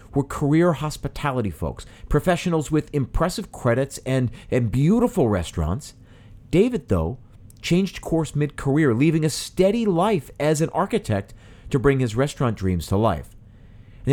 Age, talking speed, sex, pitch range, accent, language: 40-59, 135 wpm, male, 110-150 Hz, American, English